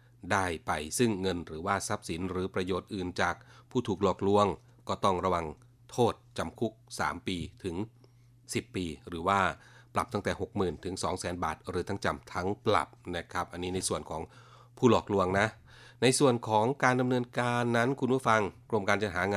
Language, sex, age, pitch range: Thai, male, 30-49, 90-120 Hz